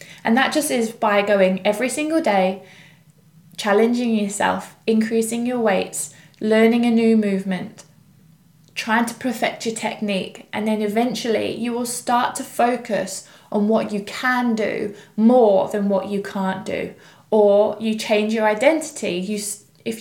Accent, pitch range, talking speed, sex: British, 195-235 Hz, 145 wpm, female